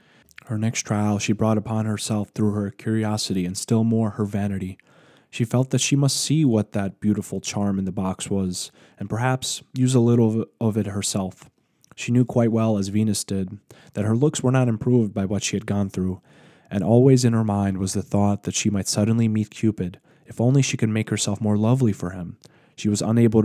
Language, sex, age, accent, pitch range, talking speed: English, male, 20-39, American, 100-115 Hz, 210 wpm